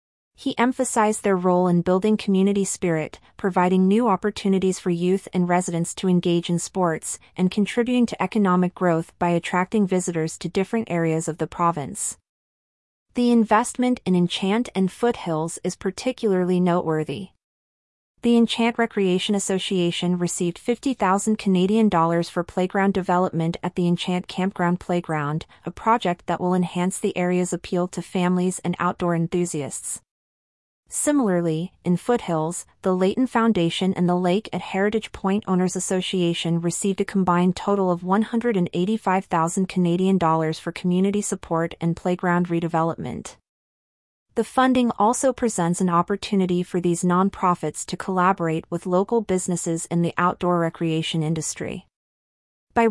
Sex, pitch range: female, 170-200 Hz